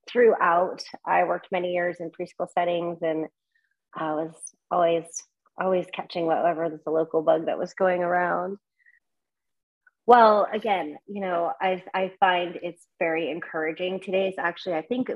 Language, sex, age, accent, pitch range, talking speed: English, female, 30-49, American, 165-195 Hz, 145 wpm